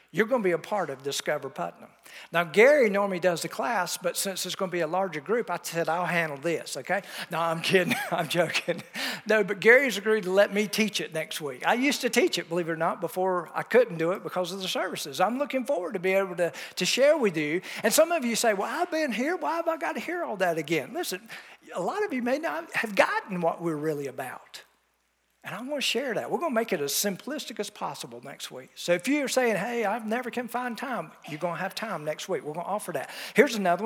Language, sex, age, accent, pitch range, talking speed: English, male, 50-69, American, 175-250 Hz, 260 wpm